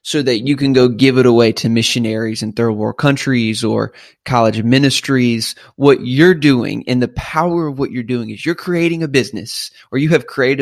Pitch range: 115-140 Hz